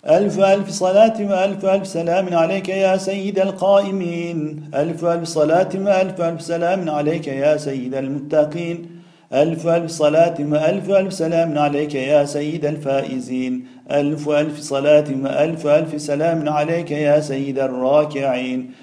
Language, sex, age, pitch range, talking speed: Turkish, male, 50-69, 150-170 Hz, 120 wpm